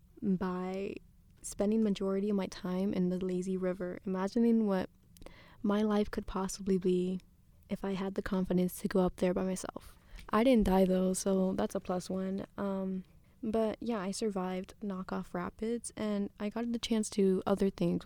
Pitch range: 185-210 Hz